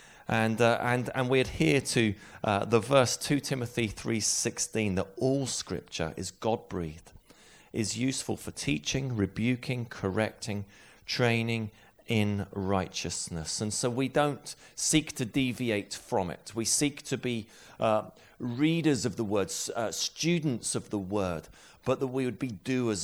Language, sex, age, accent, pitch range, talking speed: English, male, 30-49, British, 105-135 Hz, 145 wpm